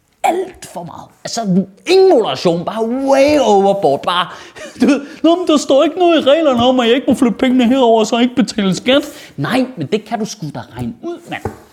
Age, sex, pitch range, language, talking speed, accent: 30-49, male, 180-260 Hz, Danish, 215 wpm, native